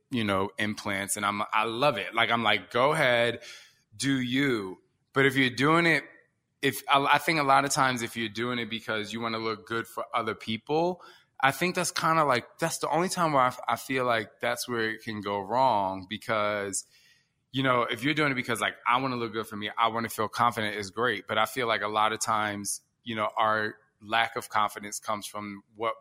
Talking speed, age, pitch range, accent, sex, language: 235 wpm, 20-39, 105-125 Hz, American, male, English